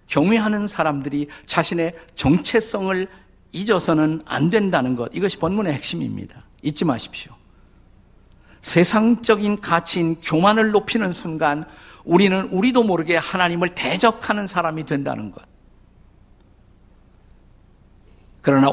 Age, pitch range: 50-69, 130-185 Hz